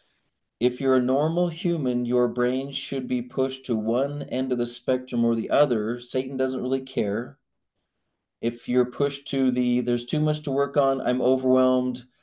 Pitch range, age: 110-130 Hz, 30-49